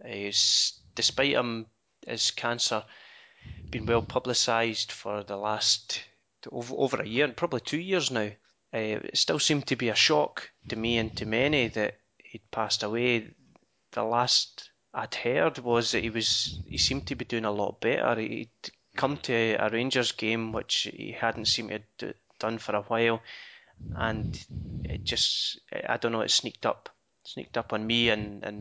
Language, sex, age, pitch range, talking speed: English, male, 20-39, 105-120 Hz, 170 wpm